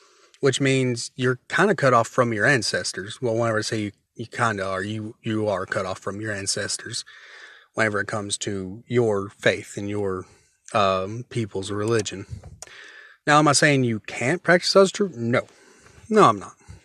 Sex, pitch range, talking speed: male, 105-130 Hz, 180 wpm